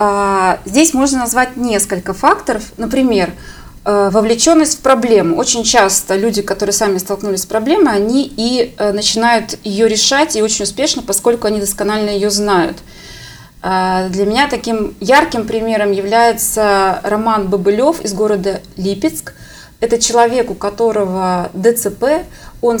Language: Russian